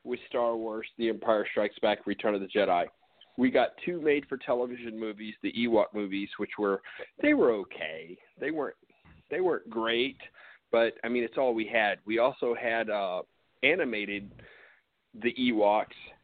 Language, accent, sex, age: English, American, male, 40-59